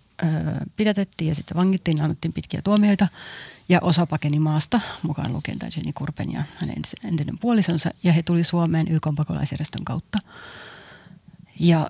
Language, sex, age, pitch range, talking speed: Finnish, female, 30-49, 155-185 Hz, 130 wpm